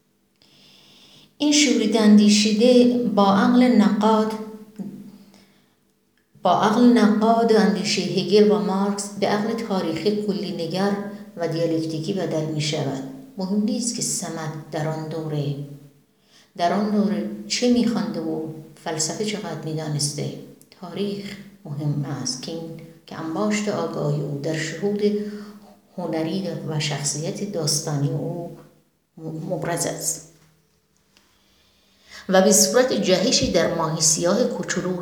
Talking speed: 115 wpm